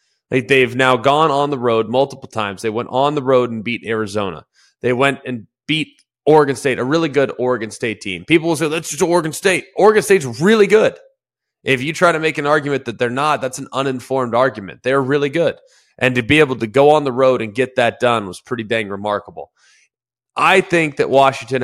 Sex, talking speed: male, 215 wpm